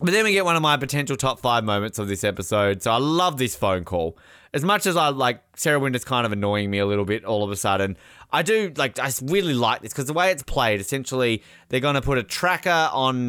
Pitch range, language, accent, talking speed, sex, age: 105-155 Hz, English, Australian, 260 wpm, male, 20-39